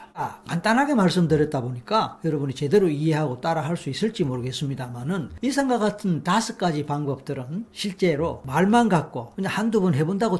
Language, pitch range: Korean, 150-200 Hz